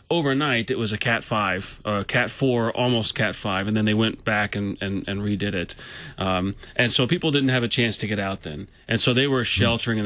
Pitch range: 105-125 Hz